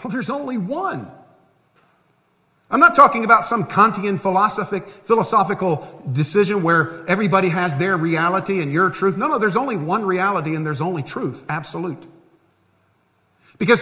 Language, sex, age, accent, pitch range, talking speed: English, male, 50-69, American, 155-205 Hz, 145 wpm